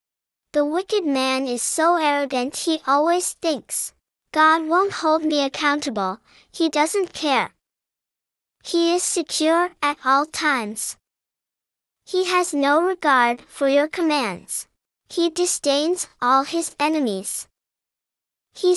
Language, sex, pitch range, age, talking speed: English, male, 275-335 Hz, 10-29, 115 wpm